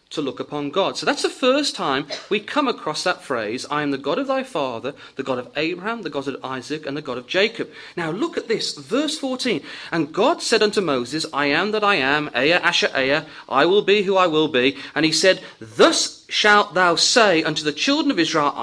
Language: English